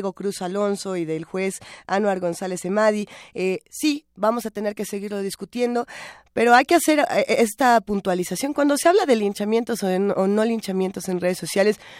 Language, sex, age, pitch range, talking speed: Spanish, female, 20-39, 185-225 Hz, 185 wpm